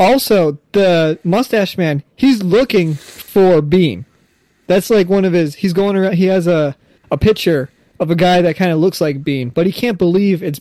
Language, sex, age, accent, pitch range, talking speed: English, male, 20-39, American, 165-195 Hz, 200 wpm